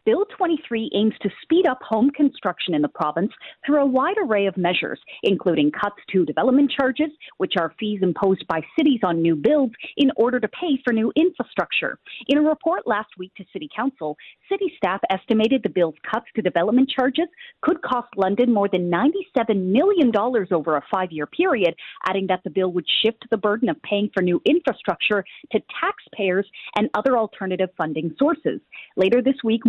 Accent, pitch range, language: American, 185-275 Hz, English